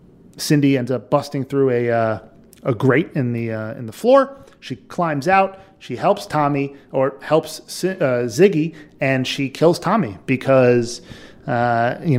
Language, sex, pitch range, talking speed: English, male, 120-155 Hz, 160 wpm